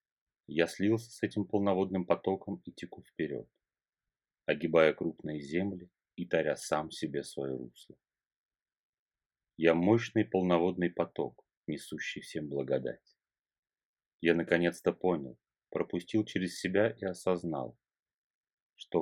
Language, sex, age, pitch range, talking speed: Russian, male, 30-49, 80-105 Hz, 105 wpm